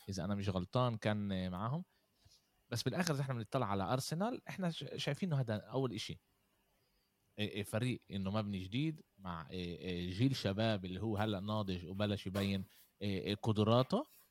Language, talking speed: Arabic, 135 wpm